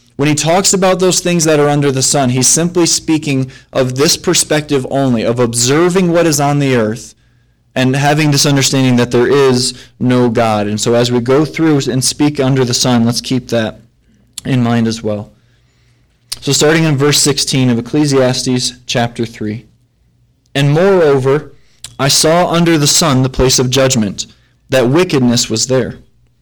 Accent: American